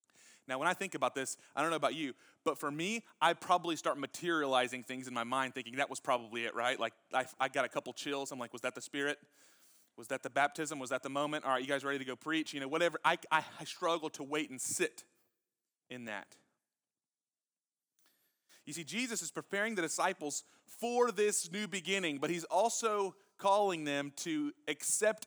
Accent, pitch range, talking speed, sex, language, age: American, 145-200 Hz, 210 wpm, male, English, 30-49